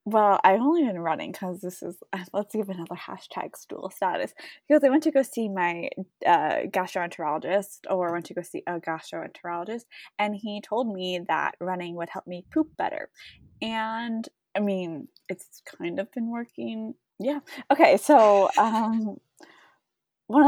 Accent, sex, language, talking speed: American, female, English, 160 wpm